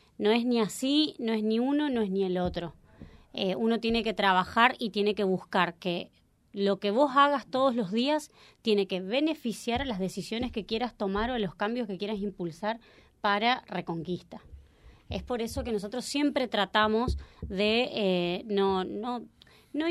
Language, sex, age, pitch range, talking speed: Spanish, female, 20-39, 195-265 Hz, 180 wpm